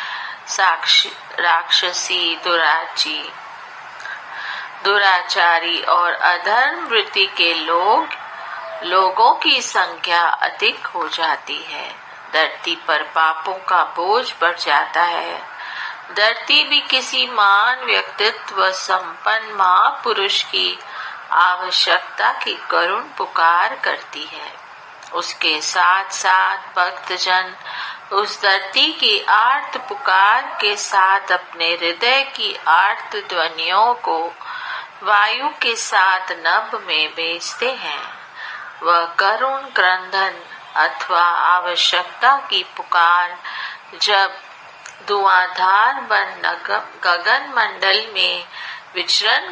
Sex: female